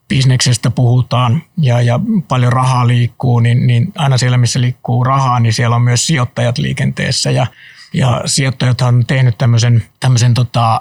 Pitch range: 120-145 Hz